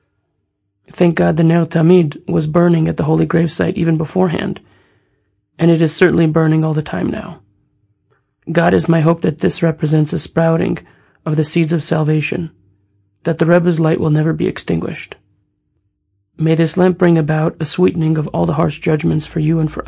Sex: male